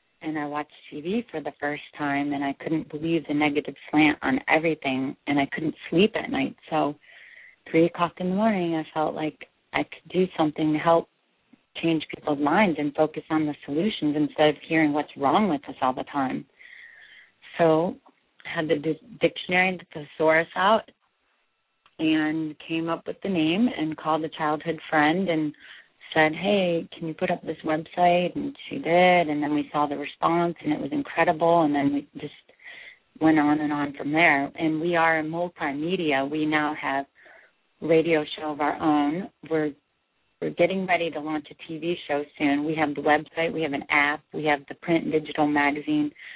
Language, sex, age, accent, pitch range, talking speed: English, female, 30-49, American, 150-170 Hz, 190 wpm